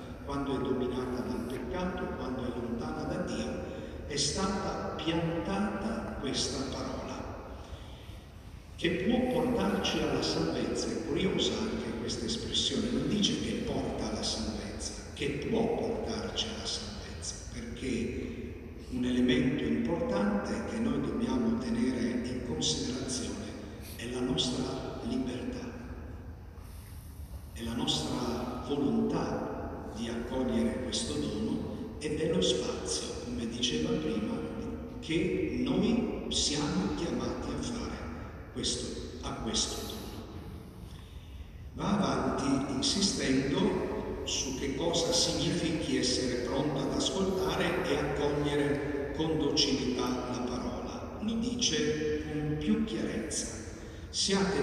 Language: Italian